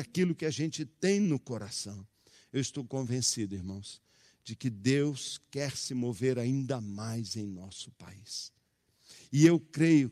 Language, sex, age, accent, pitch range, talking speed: Portuguese, male, 60-79, Brazilian, 110-150 Hz, 150 wpm